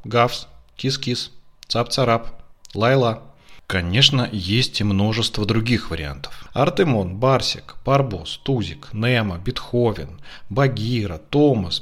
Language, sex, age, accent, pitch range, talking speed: Russian, male, 40-59, native, 100-135 Hz, 90 wpm